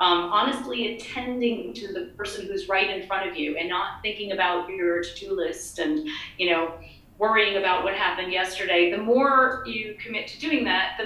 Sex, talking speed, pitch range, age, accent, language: female, 190 wpm, 190-265 Hz, 30-49, American, English